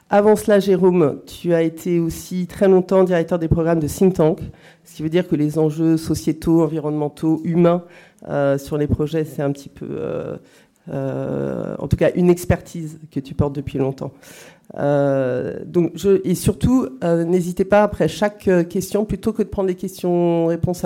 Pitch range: 155-185 Hz